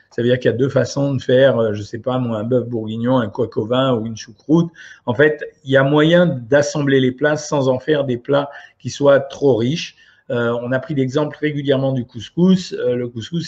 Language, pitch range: French, 125-150 Hz